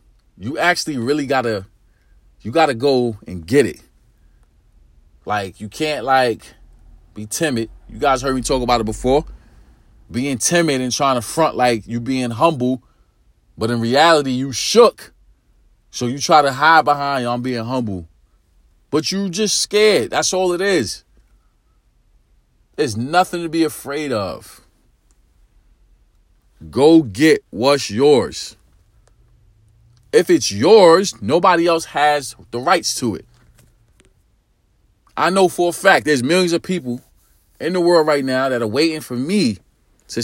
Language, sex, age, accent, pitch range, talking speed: English, male, 40-59, American, 110-175 Hz, 145 wpm